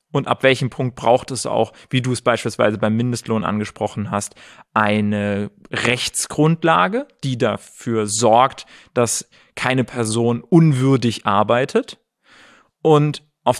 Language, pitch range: German, 120-160 Hz